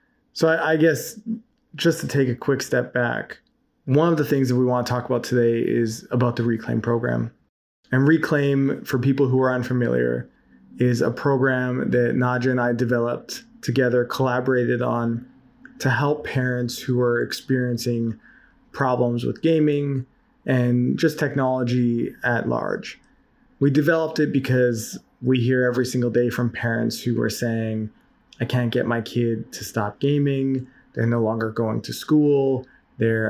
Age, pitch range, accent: 20-39, 120-140 Hz, American